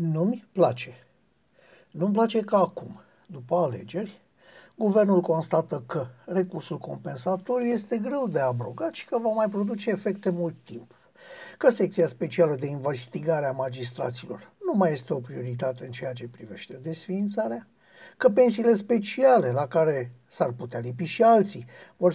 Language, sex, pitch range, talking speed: Romanian, male, 135-205 Hz, 145 wpm